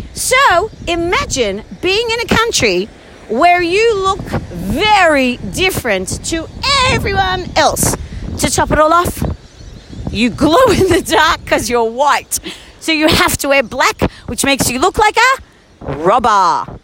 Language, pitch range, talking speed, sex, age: English, 250-385 Hz, 145 wpm, female, 40-59